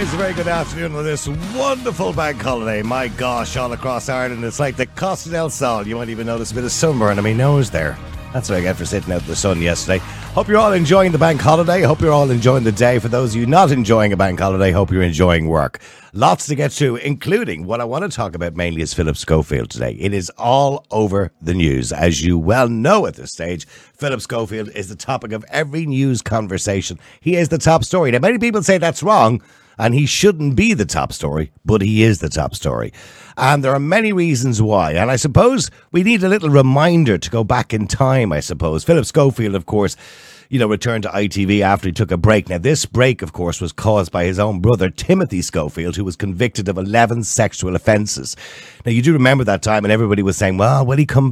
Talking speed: 235 wpm